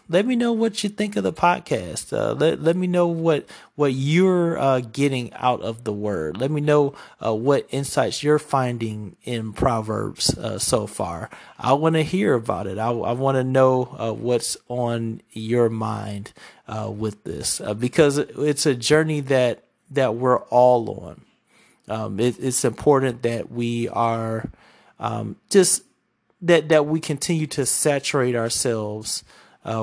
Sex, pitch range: male, 115-145 Hz